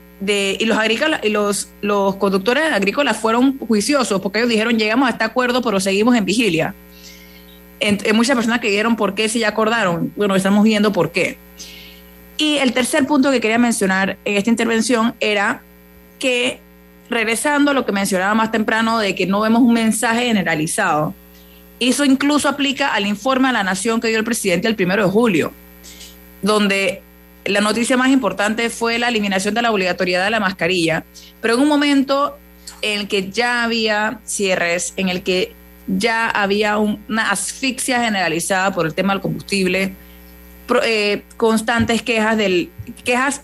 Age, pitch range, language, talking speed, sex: 30-49, 185-235 Hz, Spanish, 170 wpm, female